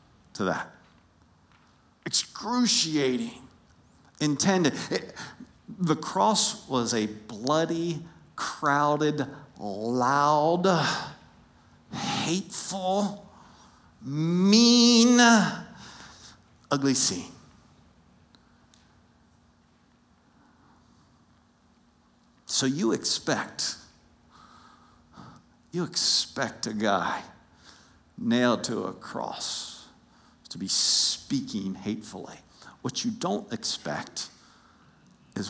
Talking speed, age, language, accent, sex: 55 wpm, 50-69, English, American, male